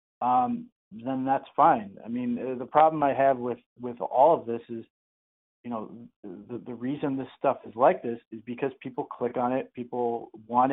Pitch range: 115-135 Hz